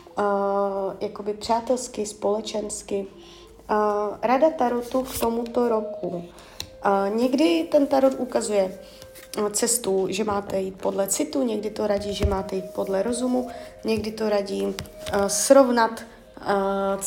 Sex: female